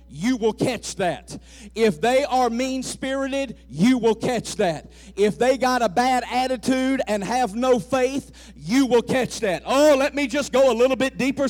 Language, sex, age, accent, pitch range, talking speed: English, male, 50-69, American, 220-295 Hz, 185 wpm